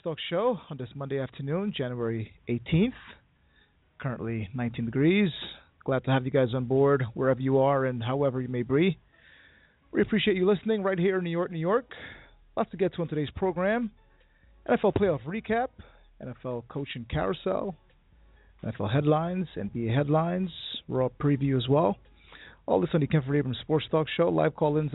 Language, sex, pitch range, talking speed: English, male, 125-175 Hz, 170 wpm